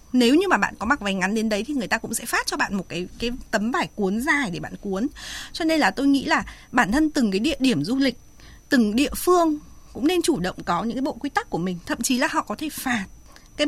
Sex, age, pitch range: female, 20-39, 220-305 Hz